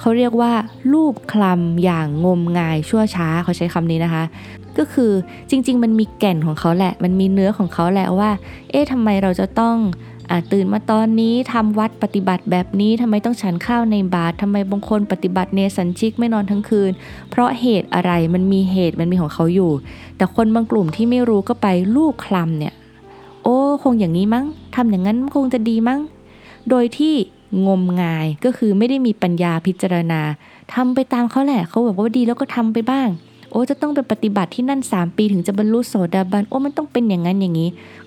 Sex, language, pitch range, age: female, Thai, 175-230 Hz, 20-39